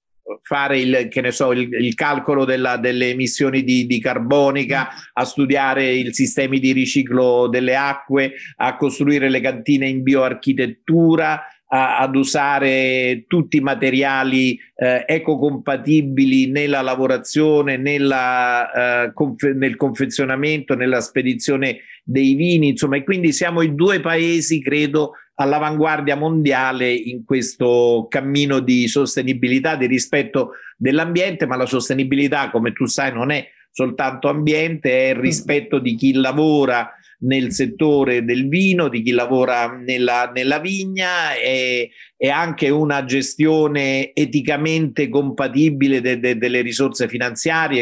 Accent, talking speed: native, 130 wpm